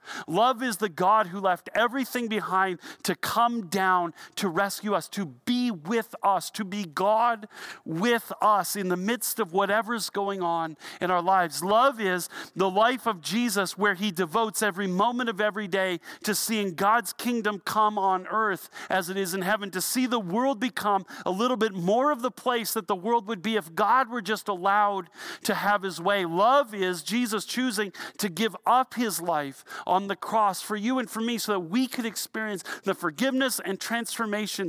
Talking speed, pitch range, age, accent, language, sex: 195 wpm, 190-230 Hz, 40-59, American, English, male